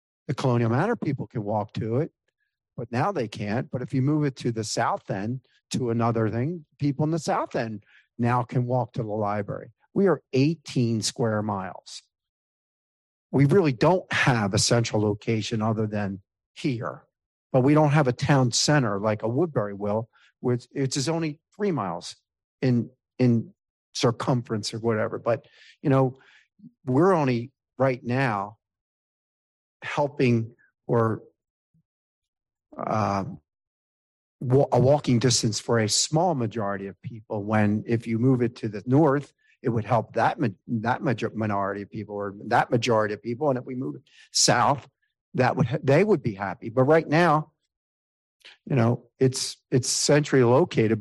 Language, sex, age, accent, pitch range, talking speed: English, male, 50-69, American, 105-140 Hz, 160 wpm